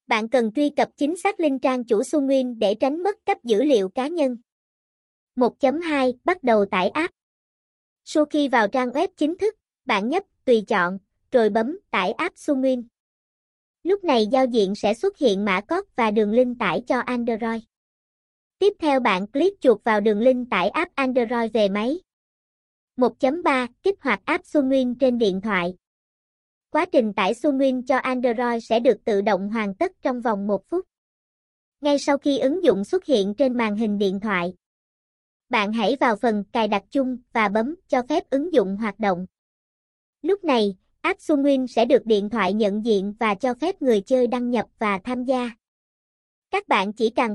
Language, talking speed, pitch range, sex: Vietnamese, 180 wpm, 220-290 Hz, male